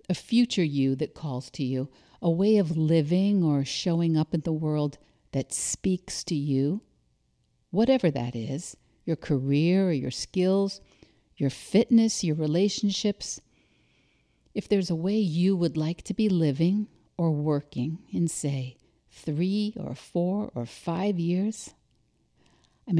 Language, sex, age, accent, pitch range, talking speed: English, female, 50-69, American, 135-195 Hz, 140 wpm